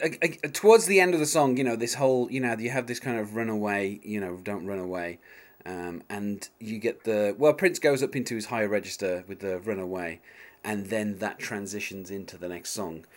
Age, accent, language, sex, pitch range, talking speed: 30-49, British, English, male, 100-130 Hz, 225 wpm